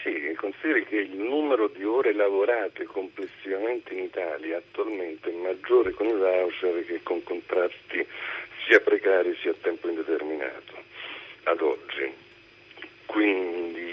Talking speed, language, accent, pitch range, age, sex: 125 wpm, Italian, native, 360-420 Hz, 50-69, male